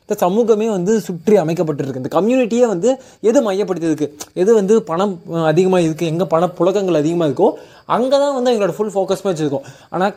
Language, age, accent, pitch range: Tamil, 20-39, native, 150-205 Hz